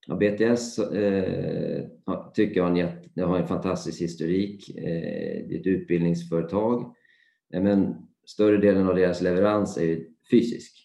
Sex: male